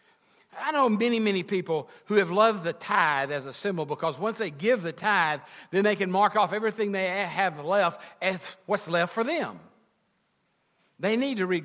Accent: American